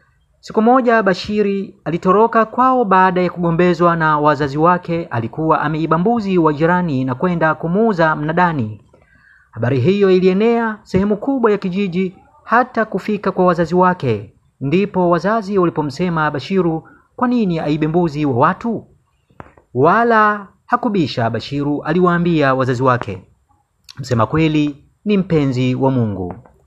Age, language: 30-49, Swahili